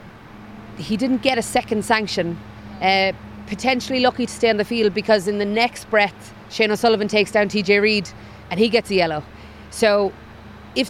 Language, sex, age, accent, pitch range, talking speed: English, female, 30-49, Irish, 165-205 Hz, 175 wpm